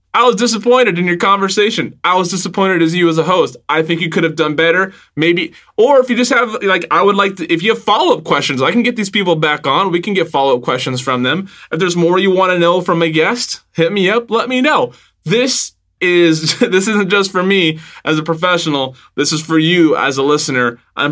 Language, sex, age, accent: English, male, 20-39, American